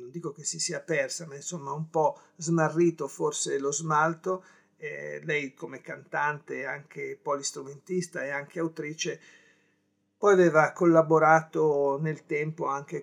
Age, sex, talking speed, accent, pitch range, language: 50-69, male, 130 wpm, native, 140-175 Hz, Italian